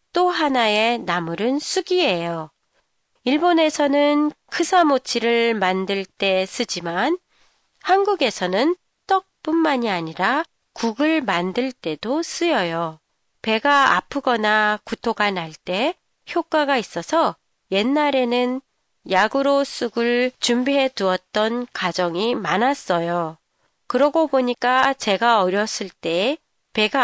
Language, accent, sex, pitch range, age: Japanese, Korean, female, 195-290 Hz, 30-49